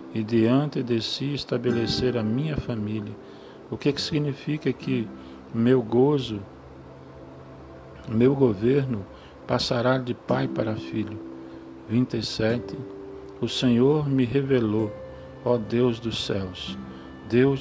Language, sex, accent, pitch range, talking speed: Portuguese, male, Brazilian, 100-130 Hz, 110 wpm